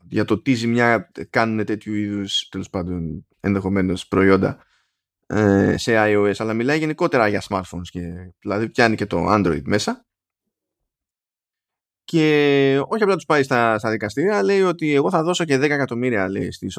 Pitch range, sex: 100-155 Hz, male